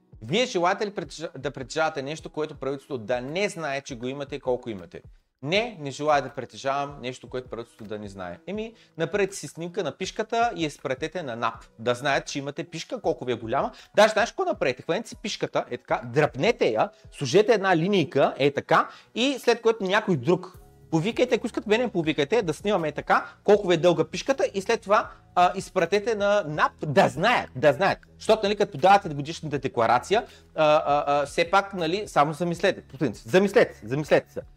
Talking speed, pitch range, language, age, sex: 195 wpm, 140-200 Hz, Bulgarian, 30-49, male